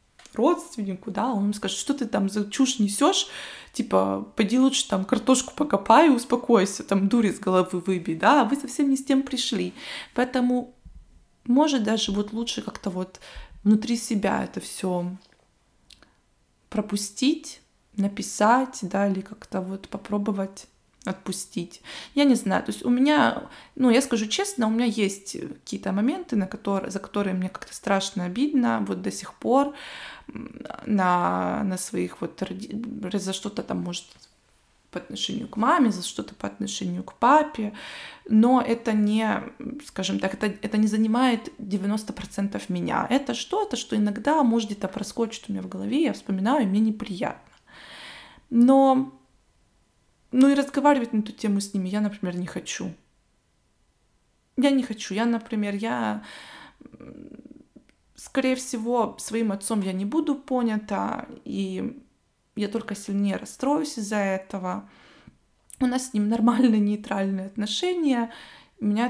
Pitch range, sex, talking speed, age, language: 195-255 Hz, female, 145 wpm, 20-39, Russian